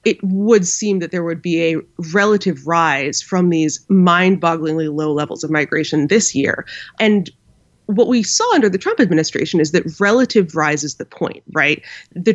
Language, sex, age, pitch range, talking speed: English, female, 20-39, 160-200 Hz, 180 wpm